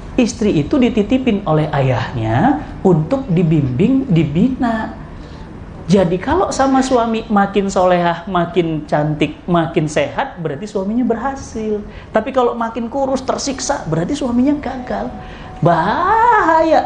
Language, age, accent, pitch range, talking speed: Indonesian, 30-49, native, 180-255 Hz, 105 wpm